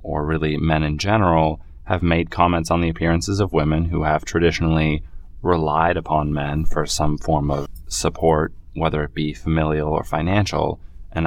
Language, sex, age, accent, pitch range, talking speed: English, male, 20-39, American, 75-85 Hz, 165 wpm